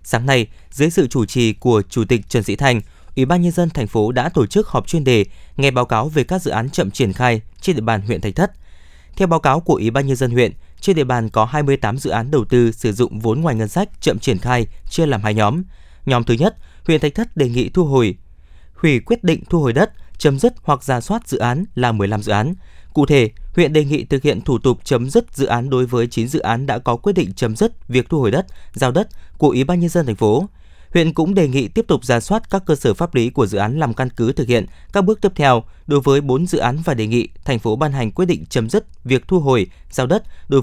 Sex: male